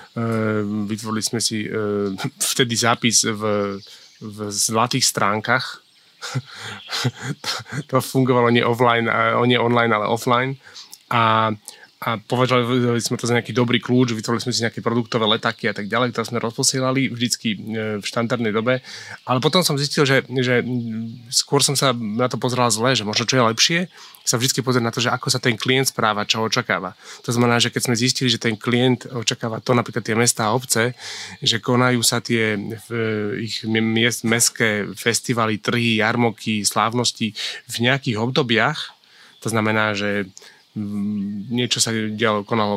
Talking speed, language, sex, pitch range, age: 155 wpm, Slovak, male, 110-125 Hz, 20-39